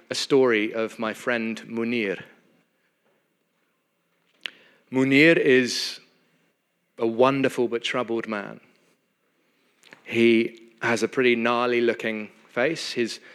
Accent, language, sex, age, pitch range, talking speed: British, English, male, 30-49, 105-130 Hz, 95 wpm